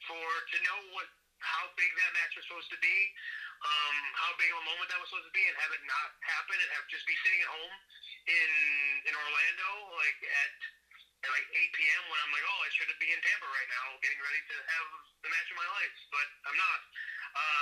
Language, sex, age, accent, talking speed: English, male, 30-49, American, 230 wpm